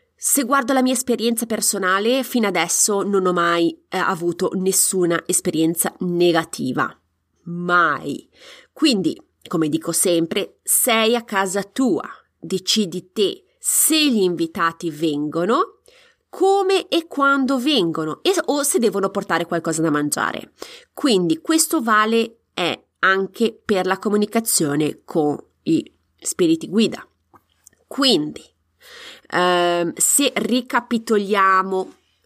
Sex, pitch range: female, 175-260 Hz